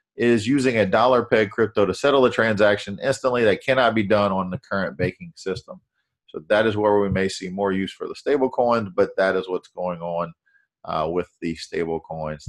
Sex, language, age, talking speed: male, English, 40-59, 210 wpm